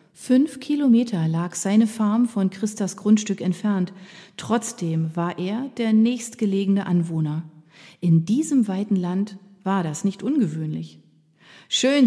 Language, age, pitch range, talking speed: German, 40-59, 170-210 Hz, 120 wpm